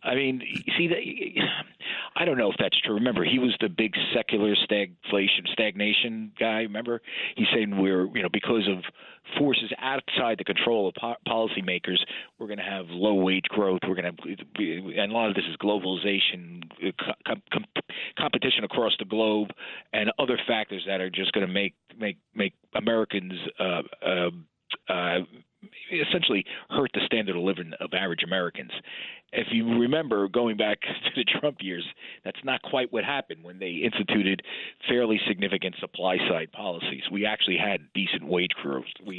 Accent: American